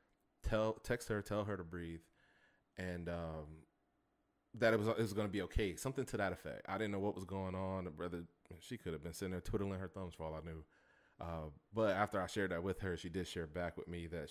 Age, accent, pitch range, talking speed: 30-49, American, 85-105 Hz, 250 wpm